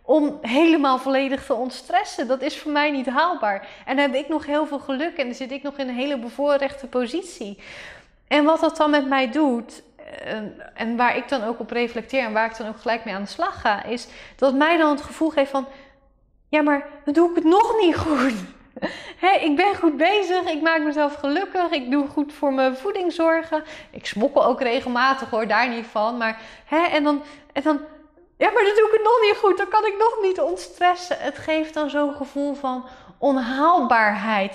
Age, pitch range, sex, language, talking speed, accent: 20-39, 245-310 Hz, female, Dutch, 215 wpm, Dutch